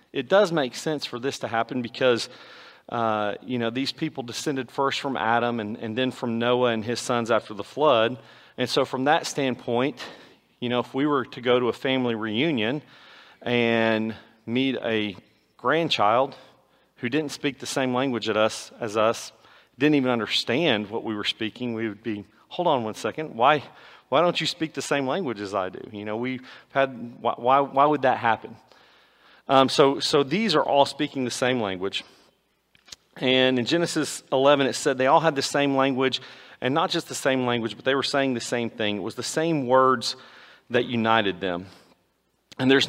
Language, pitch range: English, 115-135 Hz